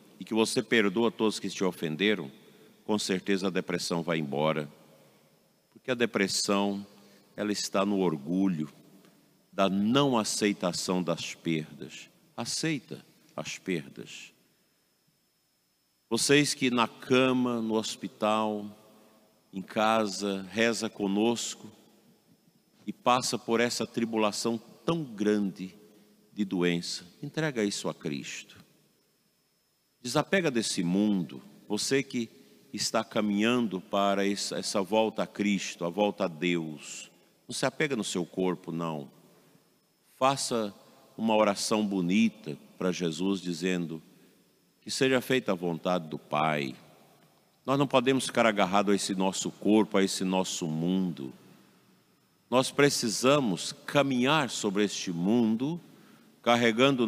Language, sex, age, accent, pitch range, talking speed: Portuguese, male, 50-69, Brazilian, 90-115 Hz, 115 wpm